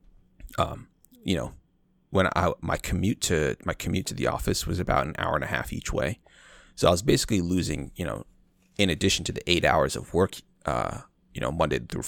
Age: 30-49